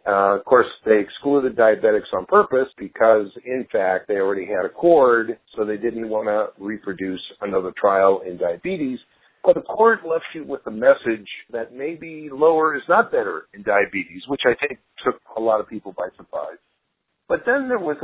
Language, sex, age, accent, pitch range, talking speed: English, male, 50-69, American, 105-150 Hz, 185 wpm